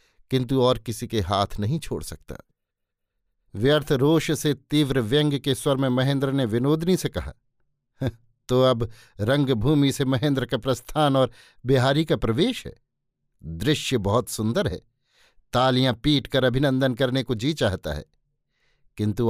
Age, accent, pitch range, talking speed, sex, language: 50-69, native, 115-140 Hz, 145 wpm, male, Hindi